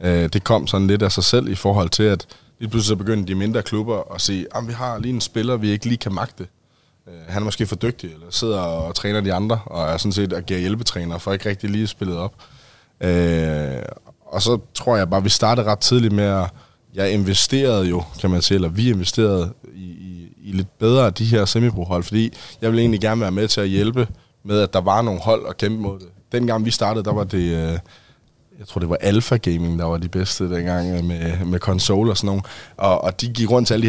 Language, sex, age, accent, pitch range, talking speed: Danish, male, 20-39, native, 95-115 Hz, 245 wpm